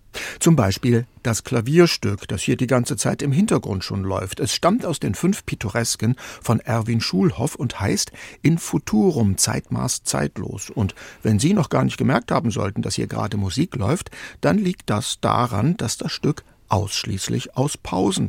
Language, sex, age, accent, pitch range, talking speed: German, male, 60-79, German, 105-130 Hz, 170 wpm